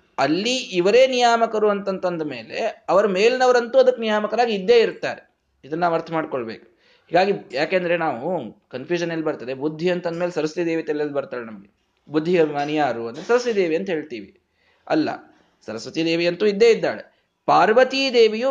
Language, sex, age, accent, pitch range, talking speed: Kannada, male, 20-39, native, 155-215 Hz, 135 wpm